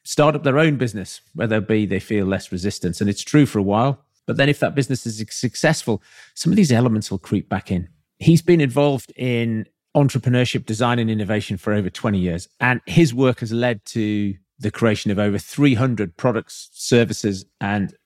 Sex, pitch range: male, 105-130 Hz